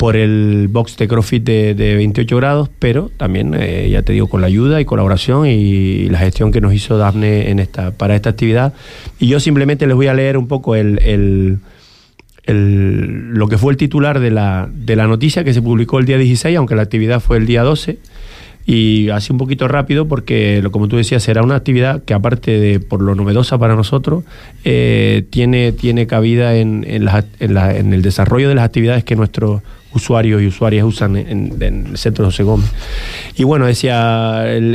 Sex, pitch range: male, 105-135 Hz